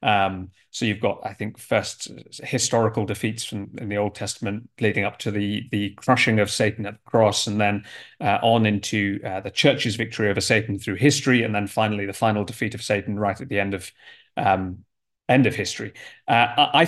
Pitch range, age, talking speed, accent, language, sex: 105-140 Hz, 30-49, 205 wpm, British, English, male